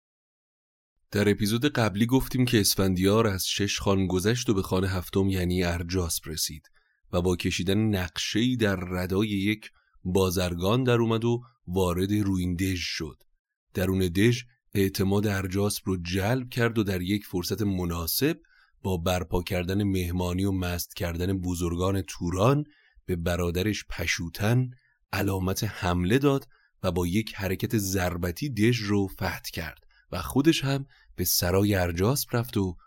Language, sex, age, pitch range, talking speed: Persian, male, 30-49, 90-105 Hz, 140 wpm